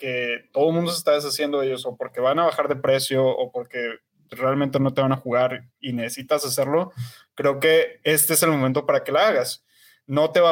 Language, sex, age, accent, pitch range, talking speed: Spanish, male, 20-39, Mexican, 135-170 Hz, 220 wpm